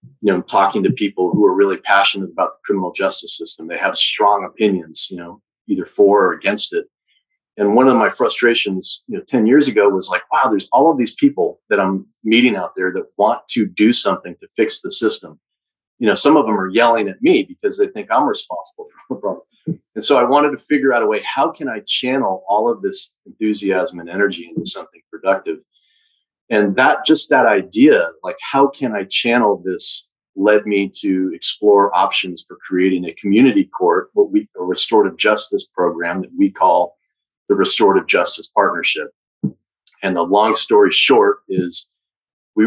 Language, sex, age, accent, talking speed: English, male, 40-59, American, 195 wpm